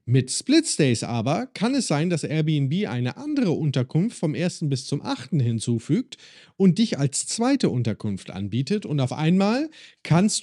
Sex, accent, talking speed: male, German, 155 wpm